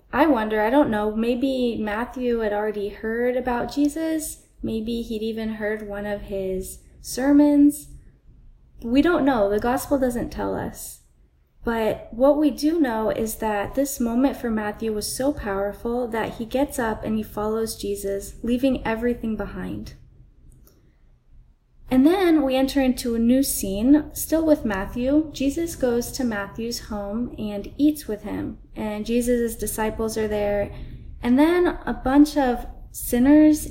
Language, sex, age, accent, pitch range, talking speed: English, female, 20-39, American, 205-265 Hz, 150 wpm